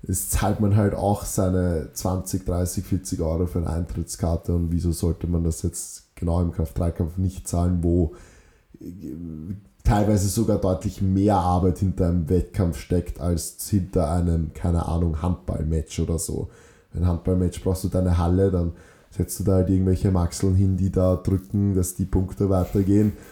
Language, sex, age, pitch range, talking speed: German, male, 20-39, 85-95 Hz, 165 wpm